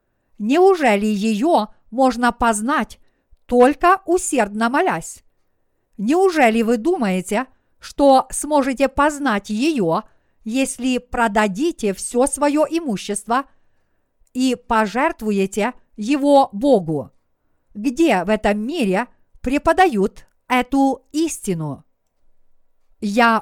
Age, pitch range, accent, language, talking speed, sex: 50-69, 215-280 Hz, native, Russian, 80 wpm, female